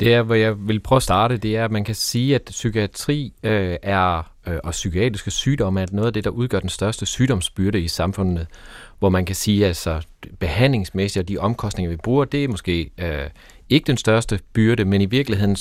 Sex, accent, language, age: male, native, Danish, 30-49